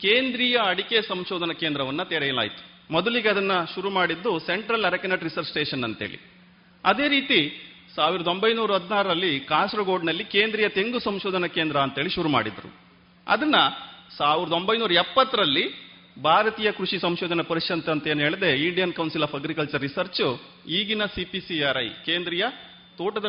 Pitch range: 155-200 Hz